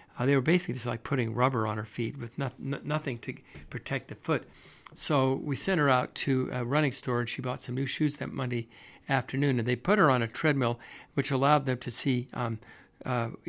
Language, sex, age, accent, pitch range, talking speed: English, male, 60-79, American, 125-145 Hz, 225 wpm